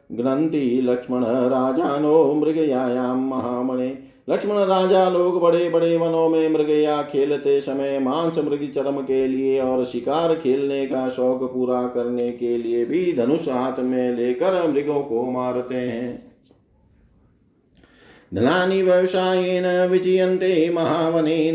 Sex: male